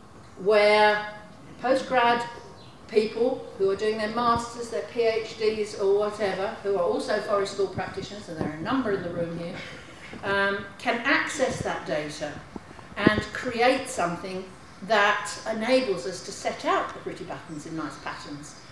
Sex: female